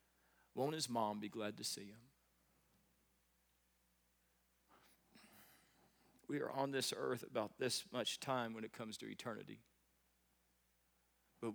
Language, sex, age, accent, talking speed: English, male, 40-59, American, 120 wpm